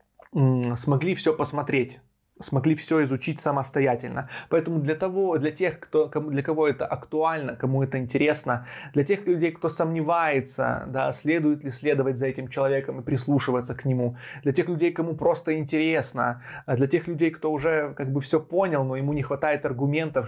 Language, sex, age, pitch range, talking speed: Russian, male, 20-39, 135-165 Hz, 165 wpm